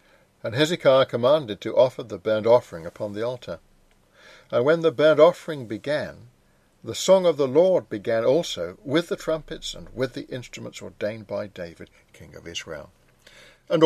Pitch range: 105-150 Hz